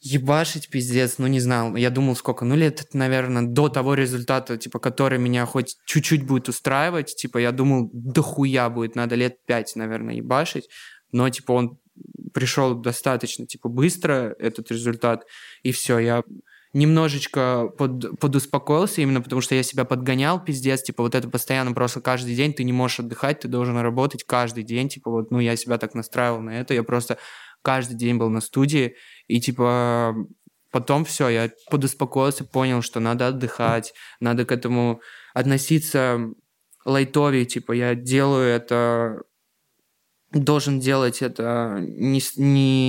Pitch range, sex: 120-135 Hz, male